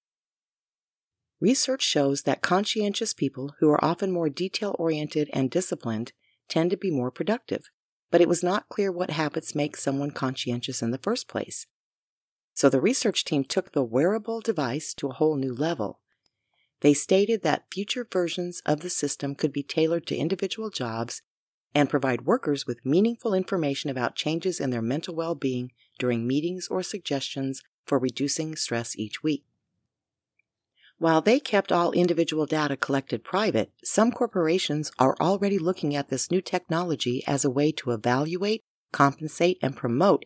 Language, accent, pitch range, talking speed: English, American, 135-180 Hz, 155 wpm